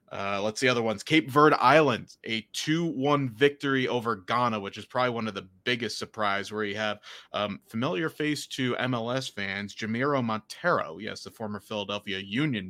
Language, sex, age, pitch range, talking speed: English, male, 30-49, 105-115 Hz, 175 wpm